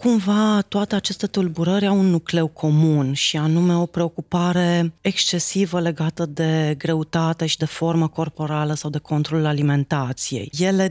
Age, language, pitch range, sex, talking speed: 30-49, Romanian, 155-185 Hz, female, 140 wpm